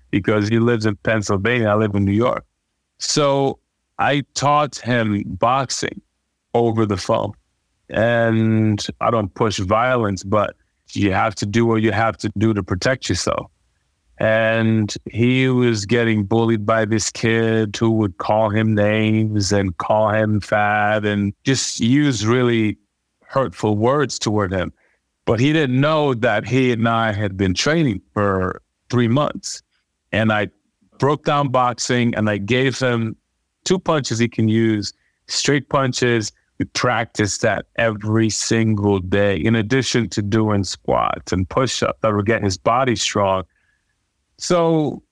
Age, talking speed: 30-49, 150 wpm